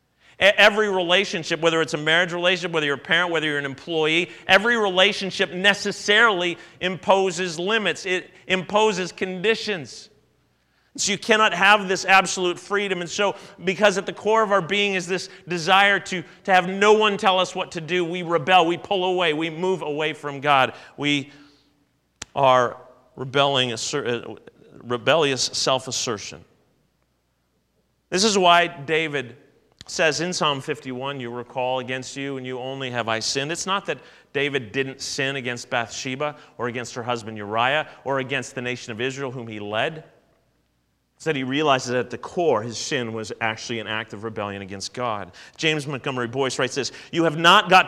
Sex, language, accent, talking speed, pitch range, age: male, English, American, 165 wpm, 130-185 Hz, 40-59